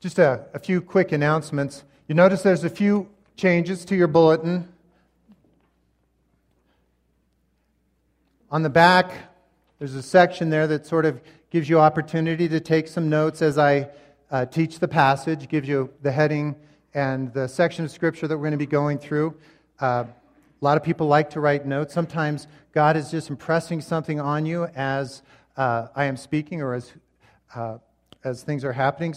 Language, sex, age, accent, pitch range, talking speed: English, male, 40-59, American, 135-165 Hz, 170 wpm